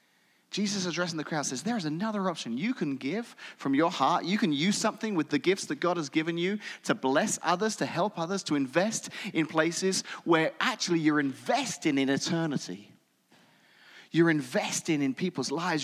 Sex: male